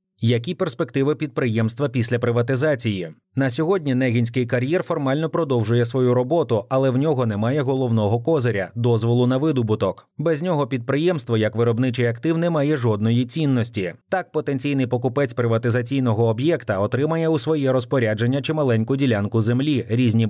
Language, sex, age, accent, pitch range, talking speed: Ukrainian, male, 20-39, native, 115-145 Hz, 135 wpm